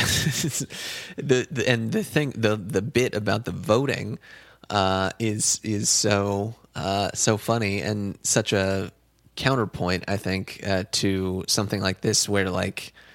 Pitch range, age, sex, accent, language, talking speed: 95-110 Hz, 20-39, male, American, English, 140 wpm